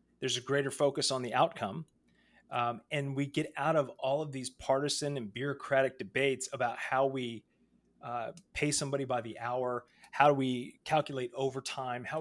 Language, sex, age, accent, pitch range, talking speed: English, male, 30-49, American, 120-145 Hz, 170 wpm